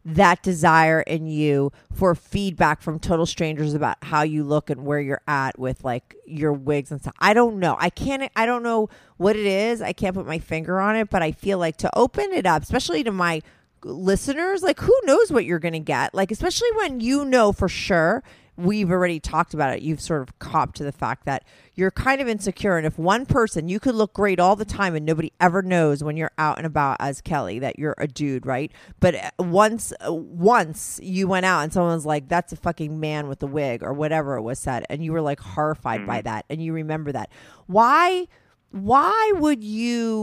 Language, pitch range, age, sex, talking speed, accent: English, 155-210 Hz, 30-49, female, 220 wpm, American